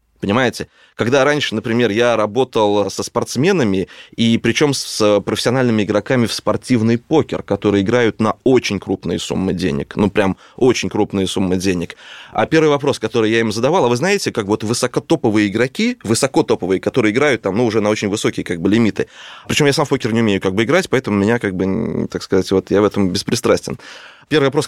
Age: 20-39